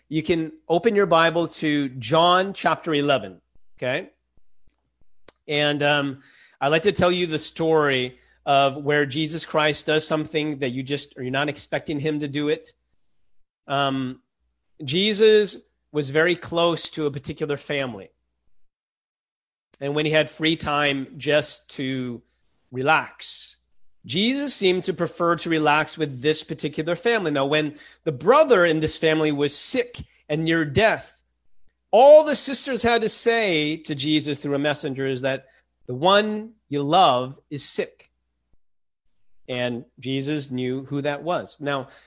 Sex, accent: male, American